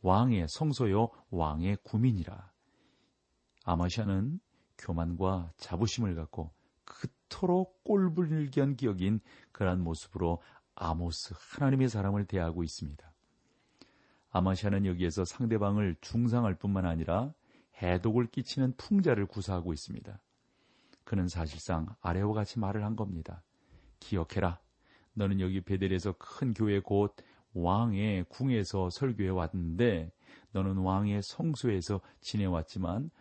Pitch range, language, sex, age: 90-115 Hz, Korean, male, 40-59